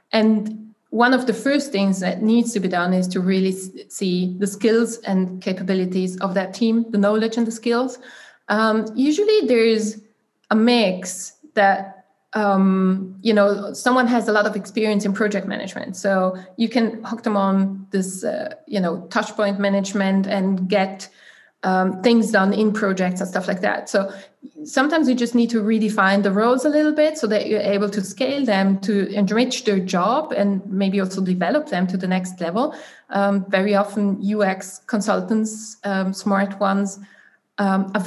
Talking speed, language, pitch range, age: 175 wpm, English, 190-220 Hz, 20-39